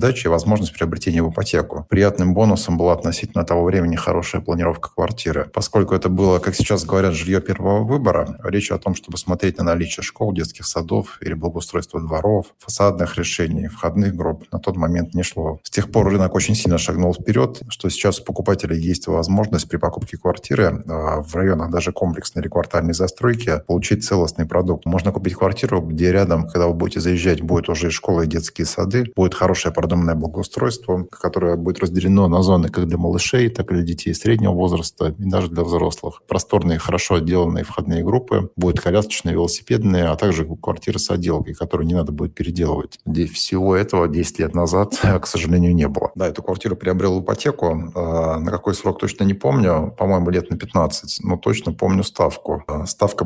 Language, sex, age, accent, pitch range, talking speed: Russian, male, 20-39, native, 85-95 Hz, 180 wpm